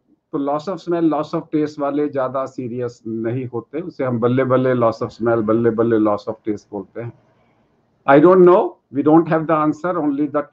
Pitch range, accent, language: 120-150 Hz, native, Hindi